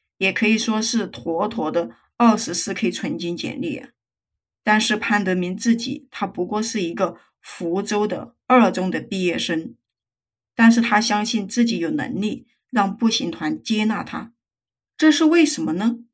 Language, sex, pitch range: Chinese, female, 195-240 Hz